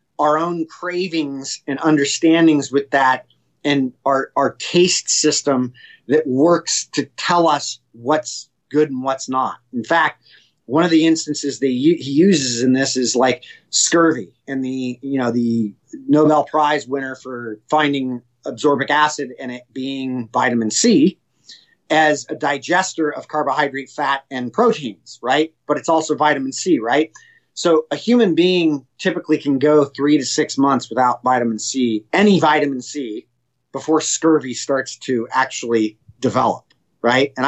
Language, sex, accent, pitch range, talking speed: English, male, American, 130-160 Hz, 150 wpm